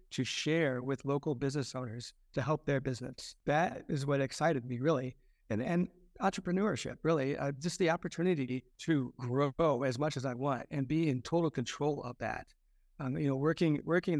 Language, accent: English, American